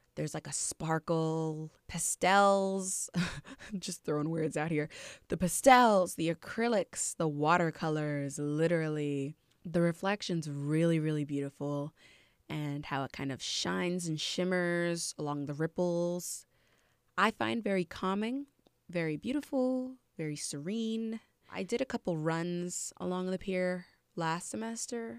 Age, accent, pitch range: 20-39, American, 155-195 Hz